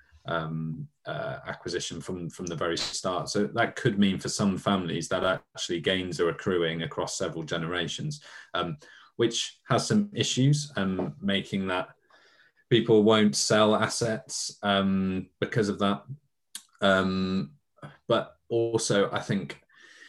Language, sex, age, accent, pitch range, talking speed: English, male, 20-39, British, 85-105 Hz, 130 wpm